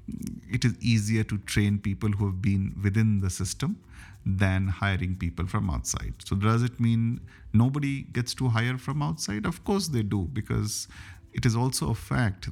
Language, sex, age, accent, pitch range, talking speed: English, male, 50-69, Indian, 95-120 Hz, 175 wpm